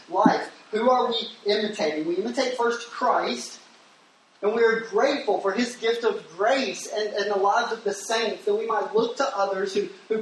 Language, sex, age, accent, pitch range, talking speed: English, male, 30-49, American, 200-240 Hz, 195 wpm